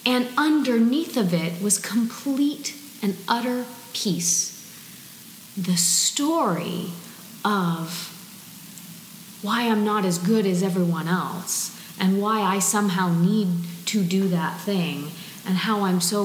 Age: 40-59